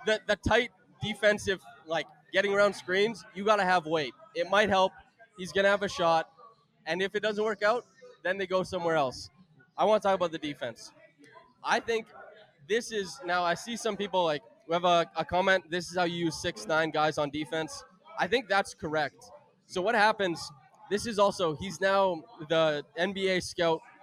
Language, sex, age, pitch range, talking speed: English, male, 20-39, 160-200 Hz, 205 wpm